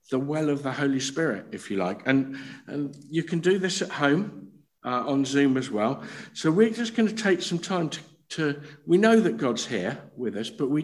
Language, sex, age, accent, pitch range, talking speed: English, male, 50-69, British, 130-175 Hz, 225 wpm